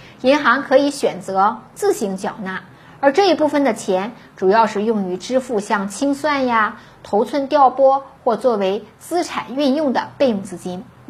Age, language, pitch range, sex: 50-69, Chinese, 195-270 Hz, female